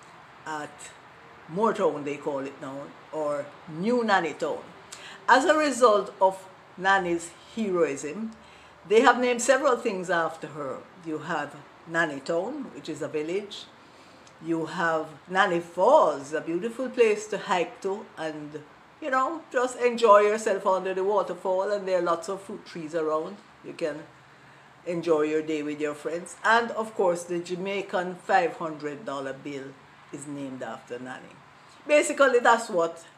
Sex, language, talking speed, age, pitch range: female, English, 145 wpm, 50-69, 155-205 Hz